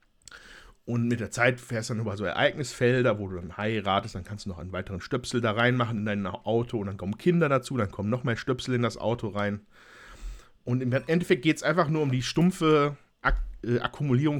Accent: German